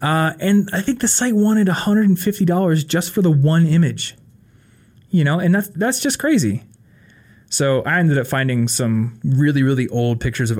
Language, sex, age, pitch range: English, male, 20-39, 115-145 Hz